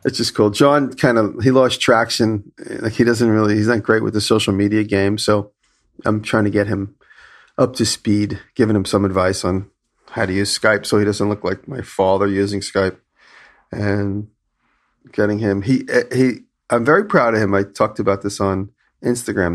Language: English